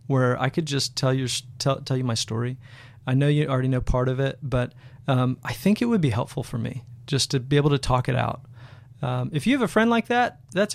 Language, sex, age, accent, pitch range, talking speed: English, male, 30-49, American, 125-165 Hz, 245 wpm